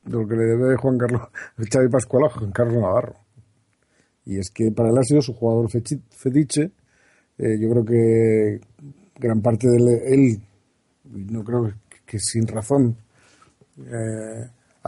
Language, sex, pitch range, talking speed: Spanish, male, 105-125 Hz, 155 wpm